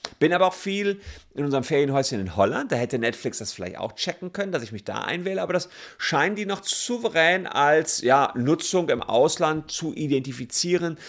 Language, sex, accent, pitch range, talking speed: German, male, German, 105-150 Hz, 190 wpm